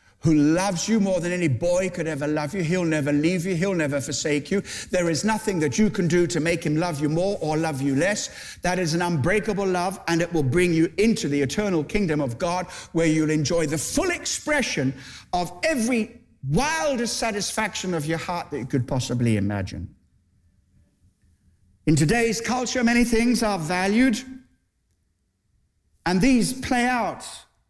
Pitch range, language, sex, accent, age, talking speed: 145-215 Hz, English, male, British, 60-79, 175 wpm